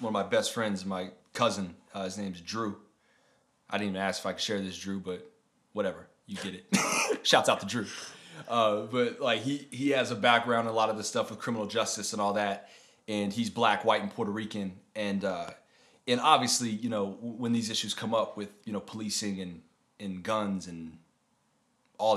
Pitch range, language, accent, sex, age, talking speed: 100-125 Hz, English, American, male, 30-49, 210 wpm